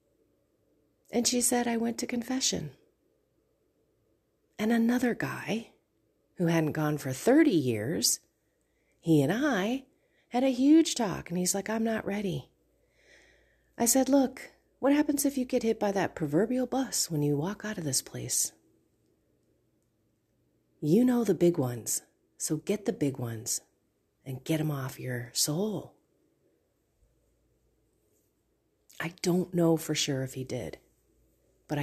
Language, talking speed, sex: English, 140 wpm, female